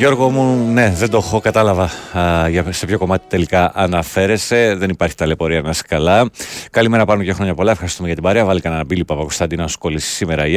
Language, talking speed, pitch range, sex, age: Greek, 210 wpm, 85-115 Hz, male, 30-49